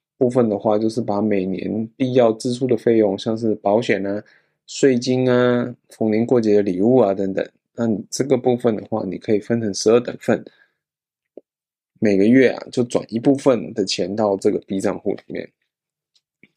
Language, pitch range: Chinese, 105-130 Hz